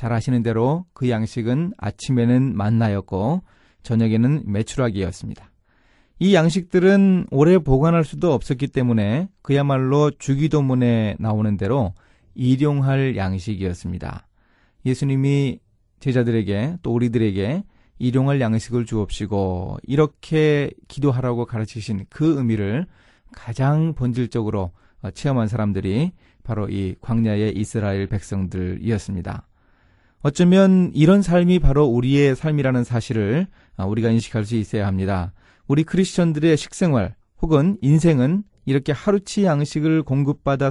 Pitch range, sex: 110-150 Hz, male